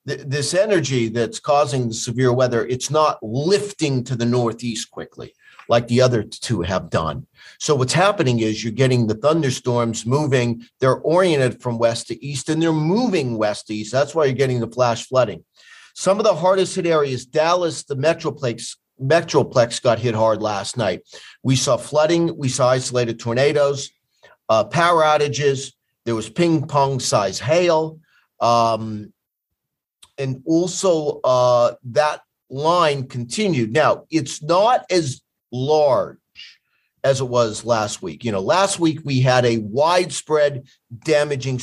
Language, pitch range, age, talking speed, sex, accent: English, 120-160 Hz, 40-59, 150 wpm, male, American